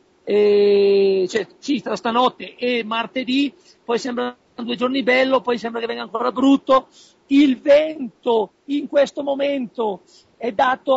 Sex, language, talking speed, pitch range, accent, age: male, Italian, 135 wpm, 230-280 Hz, native, 40-59